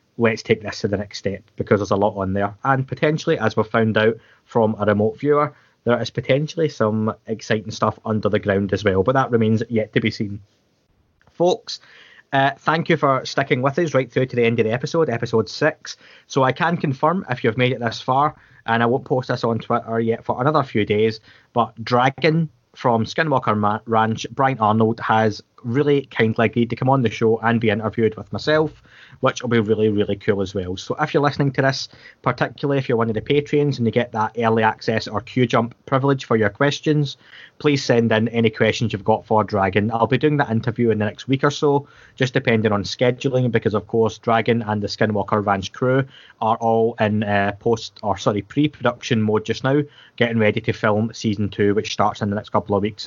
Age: 20-39